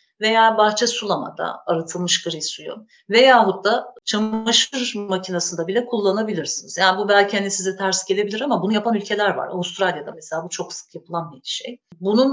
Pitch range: 180-220 Hz